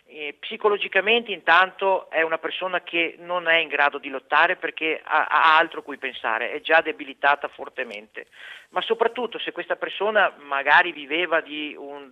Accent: native